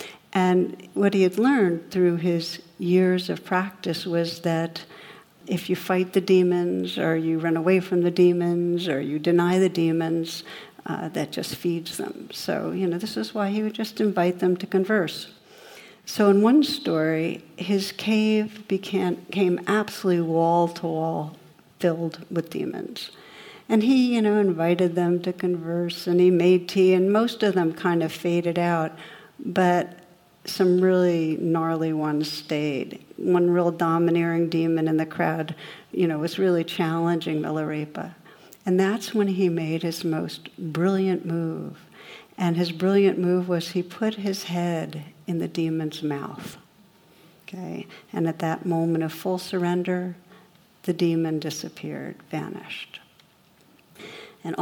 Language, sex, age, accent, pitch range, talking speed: English, female, 60-79, American, 165-185 Hz, 150 wpm